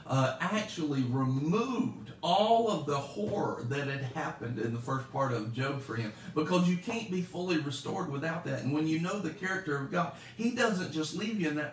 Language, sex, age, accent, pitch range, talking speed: English, male, 50-69, American, 145-200 Hz, 210 wpm